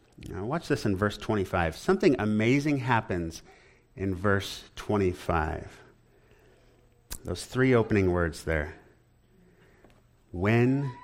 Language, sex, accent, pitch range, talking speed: English, male, American, 110-180 Hz, 100 wpm